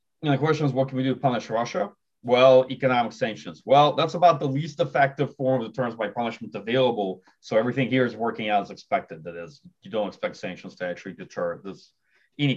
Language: English